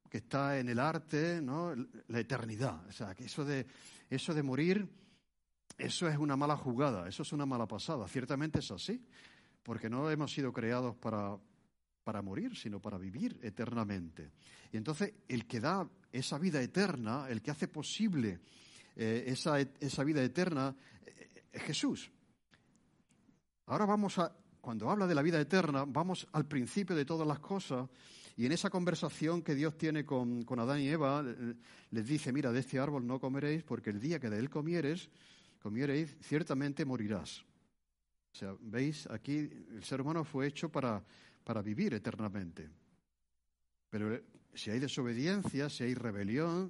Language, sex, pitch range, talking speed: Spanish, male, 115-160 Hz, 160 wpm